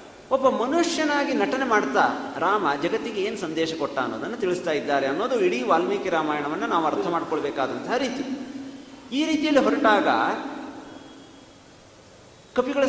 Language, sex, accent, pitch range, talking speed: Kannada, male, native, 190-285 Hz, 110 wpm